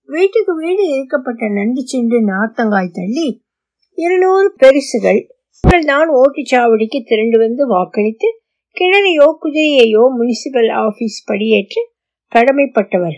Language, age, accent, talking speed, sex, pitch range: Tamil, 50-69, native, 65 wpm, female, 225-315 Hz